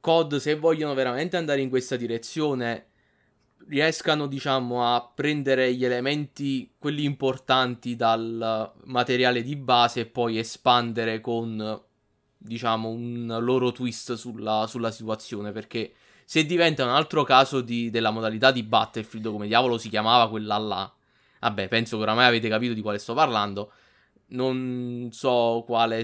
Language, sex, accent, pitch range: Italian, male, native, 115-135 Hz